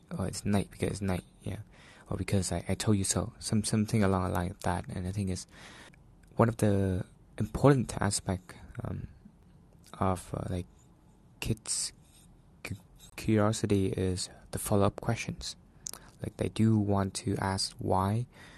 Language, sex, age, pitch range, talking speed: English, male, 20-39, 95-110 Hz, 155 wpm